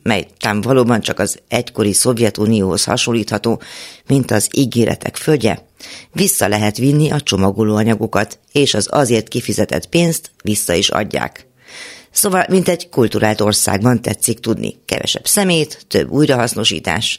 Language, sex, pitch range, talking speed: Hungarian, female, 105-135 Hz, 125 wpm